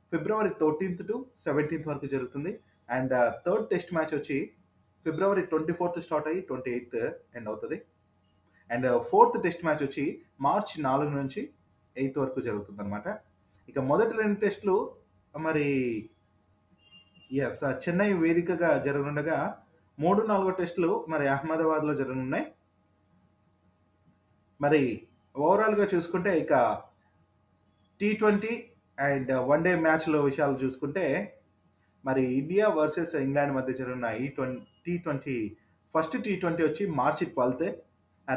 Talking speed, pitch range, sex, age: 115 wpm, 120-175 Hz, male, 30-49